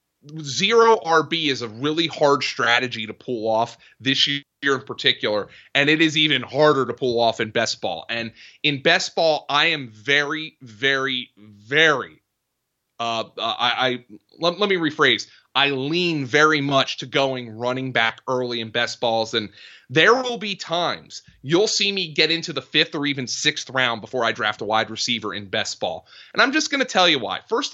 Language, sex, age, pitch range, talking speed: English, male, 30-49, 130-185 Hz, 190 wpm